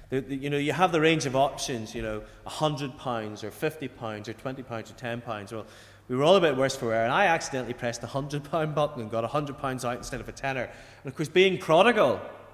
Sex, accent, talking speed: male, British, 250 wpm